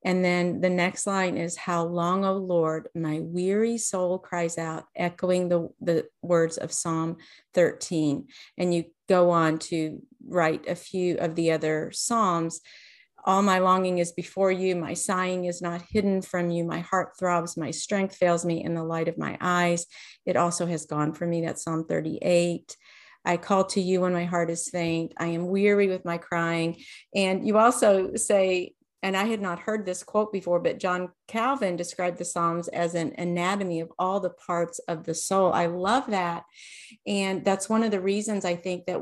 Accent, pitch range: American, 170-195 Hz